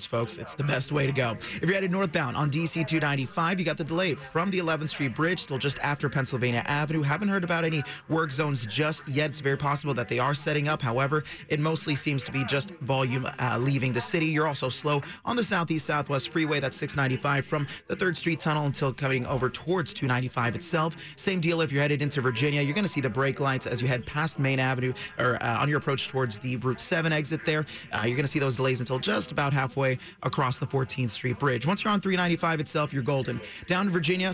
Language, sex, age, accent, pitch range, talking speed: English, male, 30-49, American, 130-160 Hz, 230 wpm